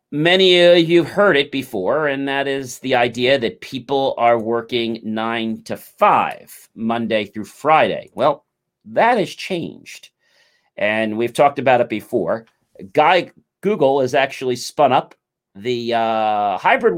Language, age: English, 40-59